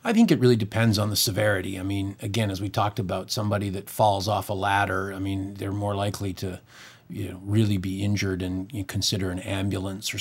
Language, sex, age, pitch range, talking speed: English, male, 40-59, 95-110 Hz, 230 wpm